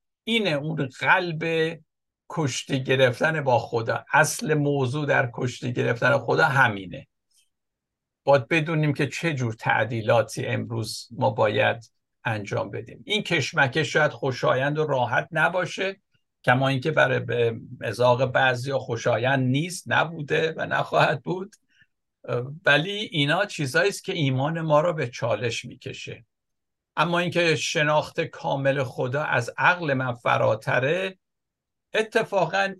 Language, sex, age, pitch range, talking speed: Persian, male, 60-79, 125-170 Hz, 115 wpm